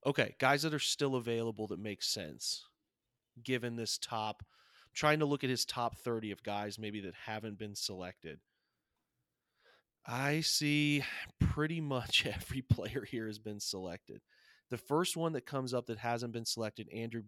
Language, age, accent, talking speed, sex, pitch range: English, 30-49, American, 165 wpm, male, 110-130 Hz